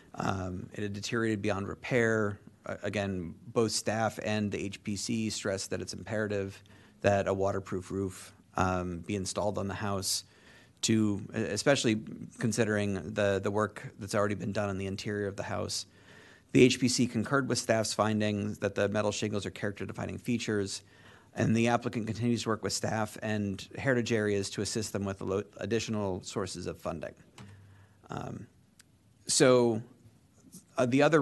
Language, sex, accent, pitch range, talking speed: English, male, American, 100-115 Hz, 155 wpm